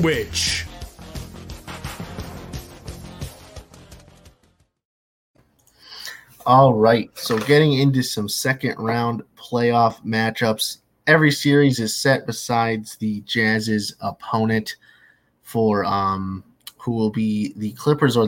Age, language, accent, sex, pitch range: 30-49, English, American, male, 105-125 Hz